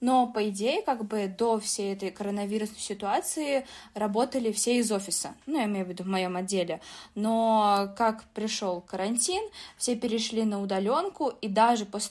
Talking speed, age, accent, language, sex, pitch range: 165 wpm, 20-39, native, Russian, female, 195-230 Hz